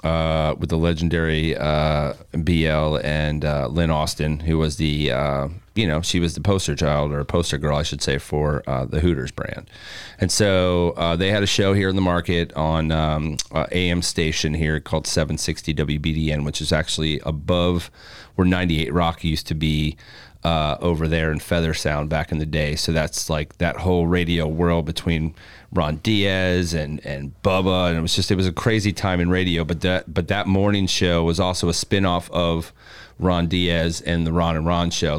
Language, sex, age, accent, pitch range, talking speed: English, male, 30-49, American, 80-100 Hz, 195 wpm